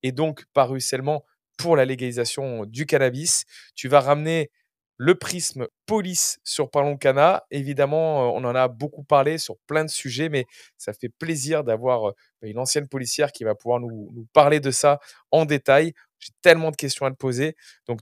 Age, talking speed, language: 20-39, 180 wpm, French